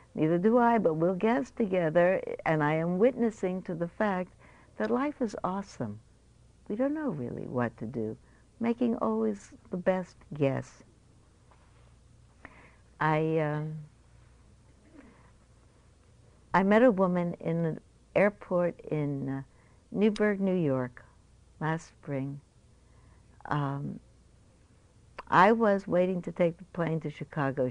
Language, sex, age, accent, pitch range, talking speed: English, female, 60-79, American, 125-175 Hz, 120 wpm